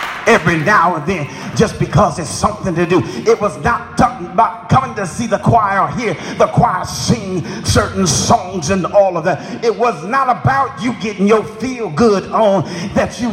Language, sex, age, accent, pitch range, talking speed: English, male, 40-59, American, 155-220 Hz, 190 wpm